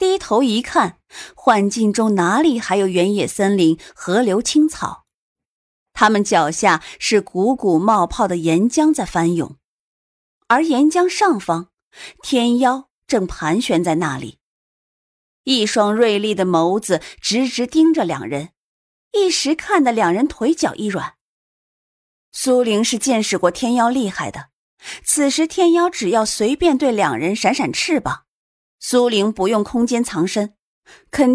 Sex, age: female, 30-49